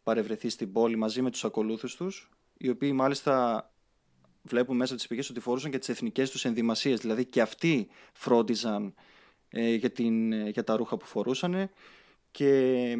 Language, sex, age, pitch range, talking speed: Greek, male, 20-39, 115-140 Hz, 155 wpm